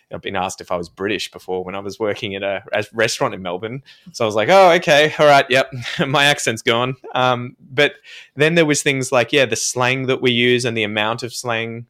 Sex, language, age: male, English, 20-39